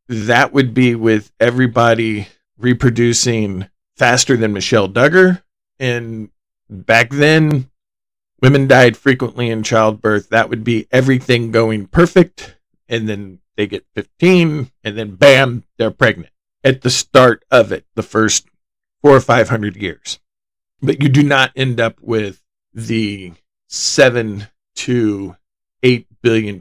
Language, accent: English, American